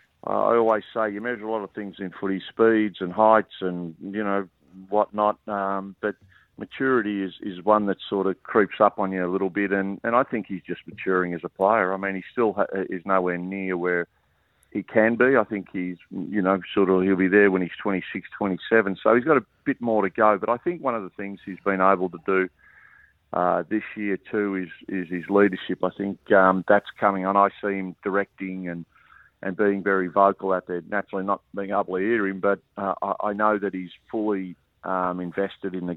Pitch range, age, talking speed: 95-105 Hz, 50-69, 220 wpm